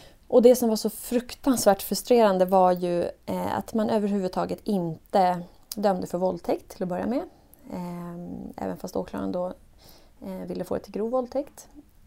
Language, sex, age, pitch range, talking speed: Swedish, female, 20-39, 190-245 Hz, 150 wpm